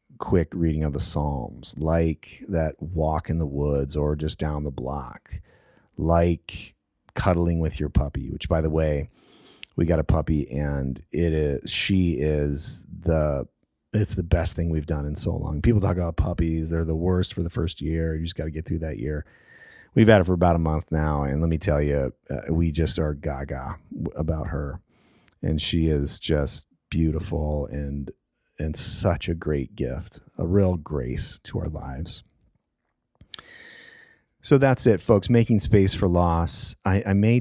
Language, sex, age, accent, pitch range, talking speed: English, male, 30-49, American, 75-95 Hz, 180 wpm